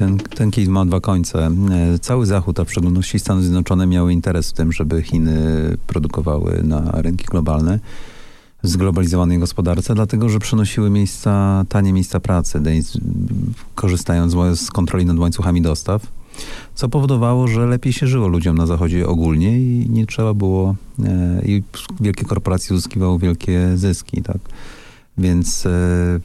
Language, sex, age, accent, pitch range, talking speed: Polish, male, 40-59, native, 80-105 Hz, 140 wpm